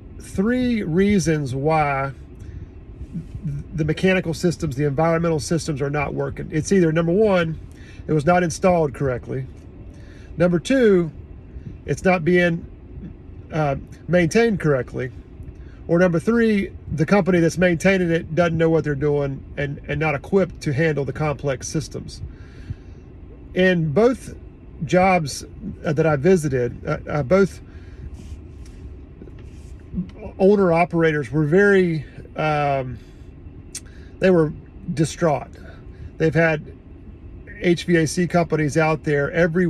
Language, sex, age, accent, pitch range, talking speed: English, male, 40-59, American, 115-175 Hz, 110 wpm